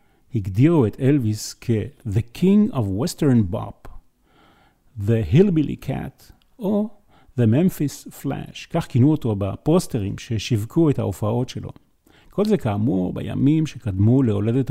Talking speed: 120 wpm